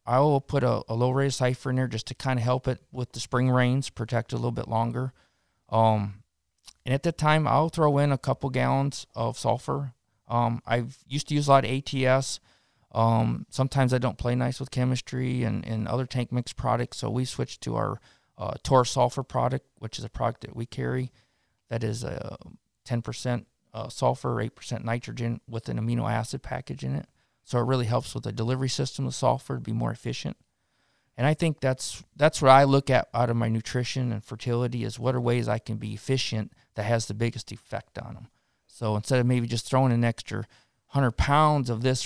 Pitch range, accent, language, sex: 115-130 Hz, American, English, male